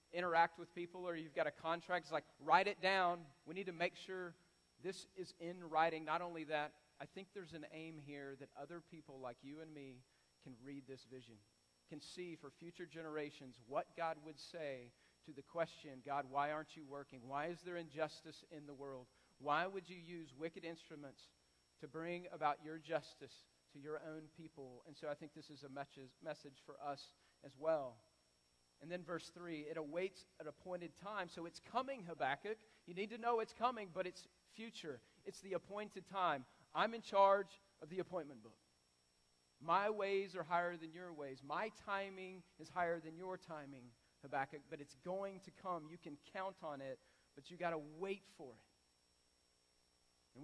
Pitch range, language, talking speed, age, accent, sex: 140-180 Hz, English, 190 wpm, 40-59, American, male